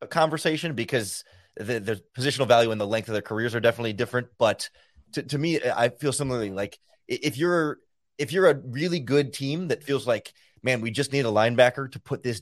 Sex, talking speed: male, 215 wpm